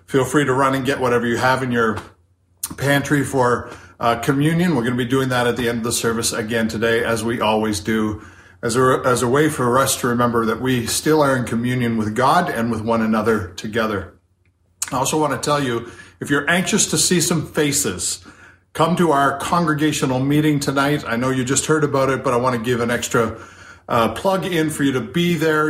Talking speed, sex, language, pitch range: 225 wpm, male, English, 115-145 Hz